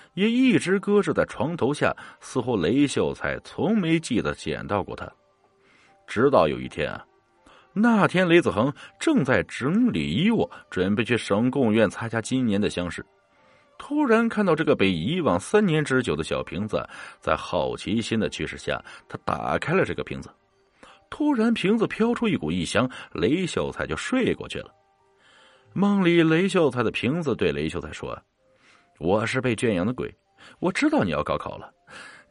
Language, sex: Chinese, male